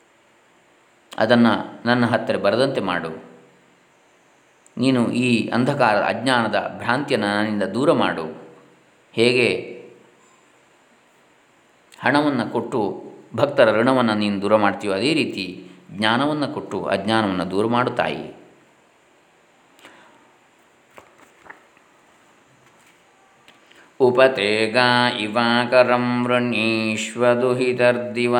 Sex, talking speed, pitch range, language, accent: male, 60 wpm, 110-125 Hz, Kannada, native